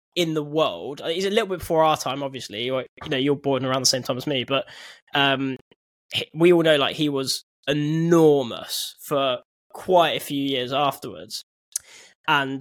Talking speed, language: 175 wpm, English